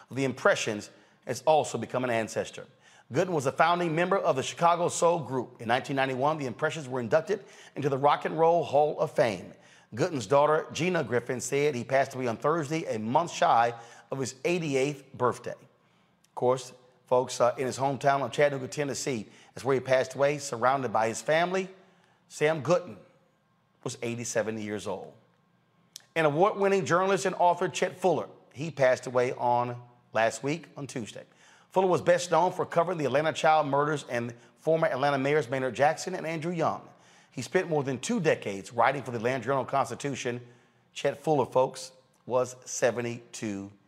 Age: 30-49